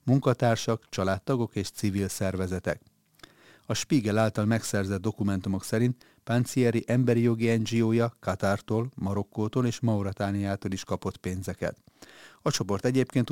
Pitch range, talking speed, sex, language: 95-115 Hz, 115 wpm, male, Hungarian